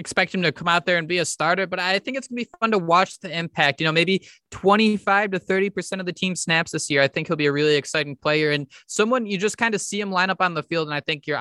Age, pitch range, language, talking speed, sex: 20-39, 140-185 Hz, English, 310 wpm, male